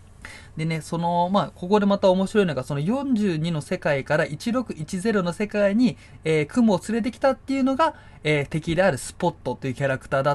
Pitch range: 135-200 Hz